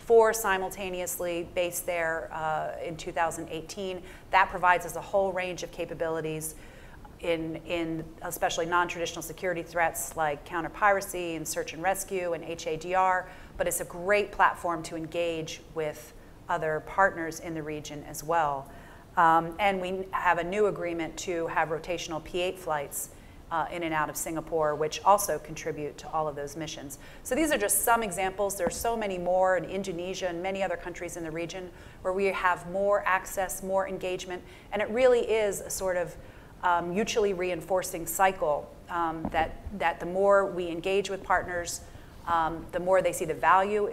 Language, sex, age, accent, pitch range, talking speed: English, female, 40-59, American, 165-190 Hz, 170 wpm